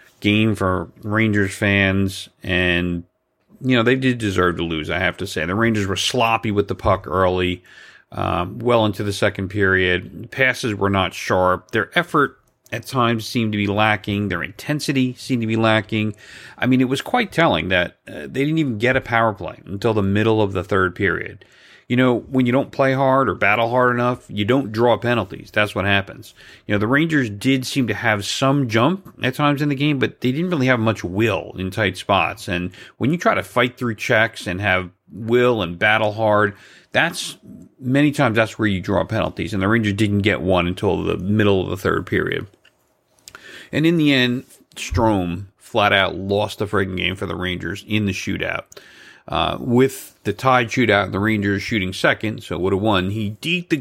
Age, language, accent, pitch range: 40-59, English, American, 95-125 Hz